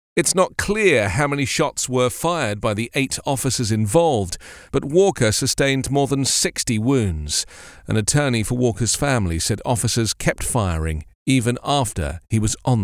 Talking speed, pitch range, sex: 160 wpm, 110-145 Hz, male